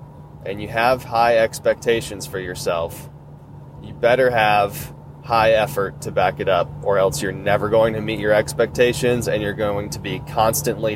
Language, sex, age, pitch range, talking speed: English, male, 20-39, 110-145 Hz, 170 wpm